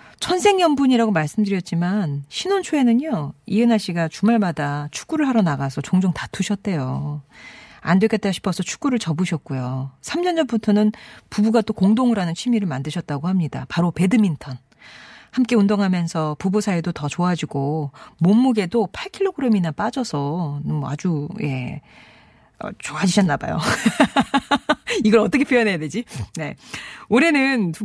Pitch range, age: 160-235 Hz, 40-59